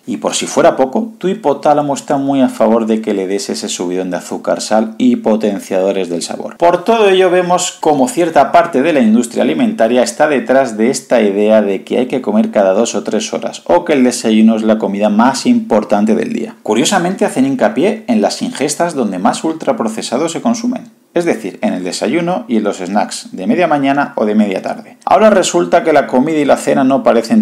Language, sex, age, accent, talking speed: Spanish, male, 40-59, Spanish, 215 wpm